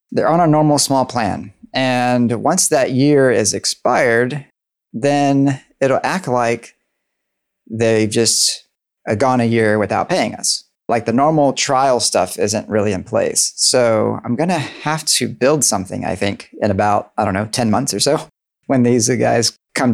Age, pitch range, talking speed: 30-49, 110-140 Hz, 170 wpm